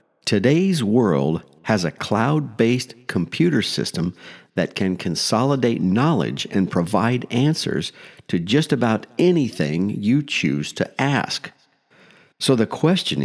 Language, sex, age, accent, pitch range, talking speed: English, male, 50-69, American, 100-150 Hz, 115 wpm